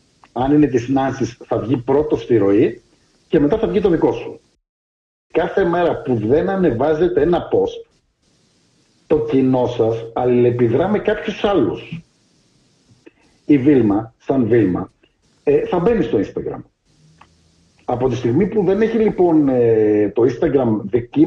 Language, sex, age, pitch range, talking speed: Greek, male, 50-69, 120-175 Hz, 135 wpm